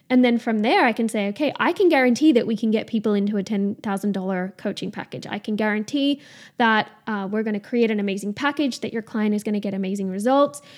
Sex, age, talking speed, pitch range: female, 10-29, 235 wpm, 215-255 Hz